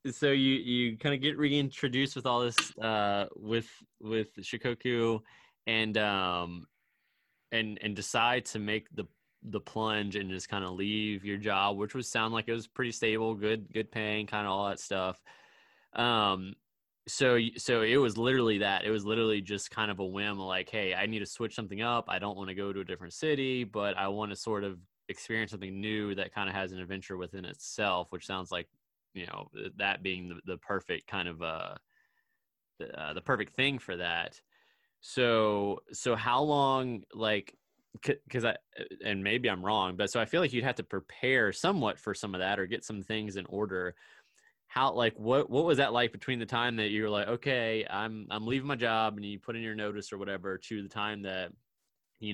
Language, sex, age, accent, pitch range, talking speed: English, male, 20-39, American, 100-115 Hz, 210 wpm